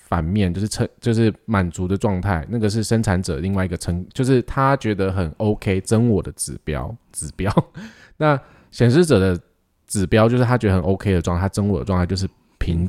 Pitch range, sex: 90-115 Hz, male